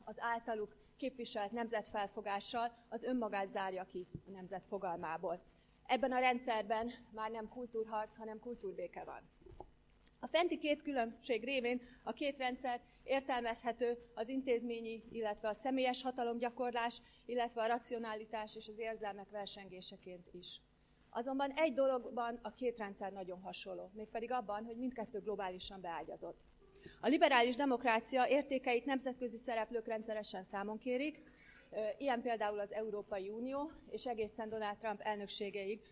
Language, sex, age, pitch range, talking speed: Hungarian, female, 30-49, 210-250 Hz, 125 wpm